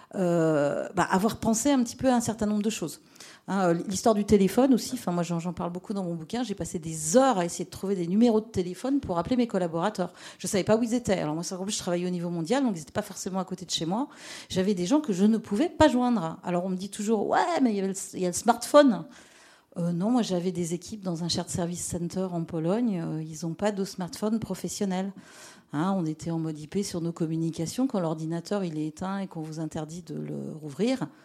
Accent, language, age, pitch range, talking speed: French, French, 40-59, 175-225 Hz, 255 wpm